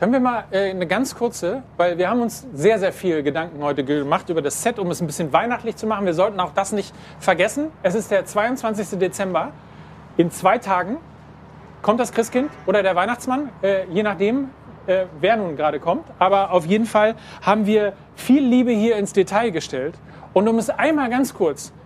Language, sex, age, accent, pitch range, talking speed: German, male, 40-59, German, 170-240 Hz, 190 wpm